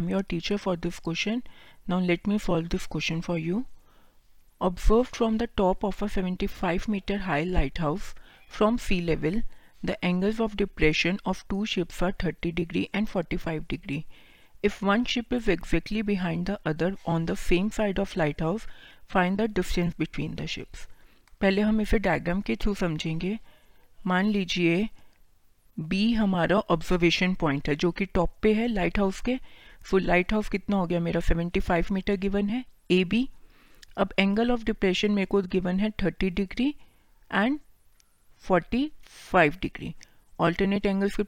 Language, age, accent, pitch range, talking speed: Hindi, 40-59, native, 175-210 Hz, 75 wpm